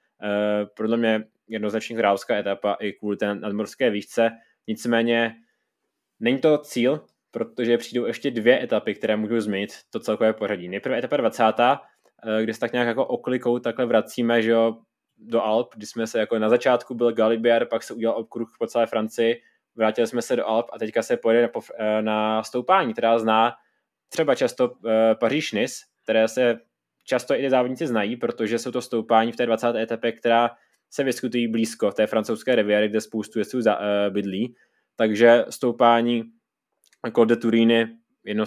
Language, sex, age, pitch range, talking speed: Czech, male, 20-39, 110-120 Hz, 160 wpm